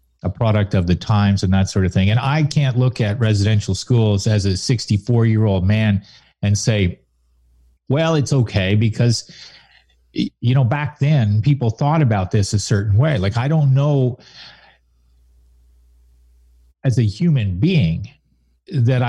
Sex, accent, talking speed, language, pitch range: male, American, 155 wpm, English, 100-135 Hz